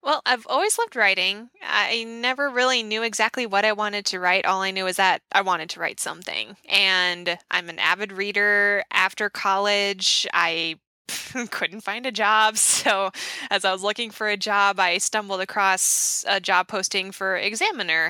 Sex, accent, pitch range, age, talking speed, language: female, American, 180-210 Hz, 20-39, 175 wpm, English